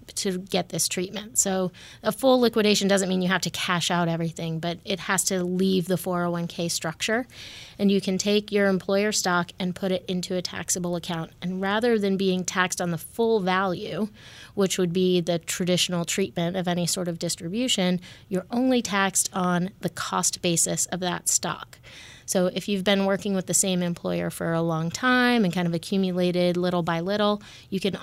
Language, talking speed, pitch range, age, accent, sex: English, 195 wpm, 170-195 Hz, 30-49, American, female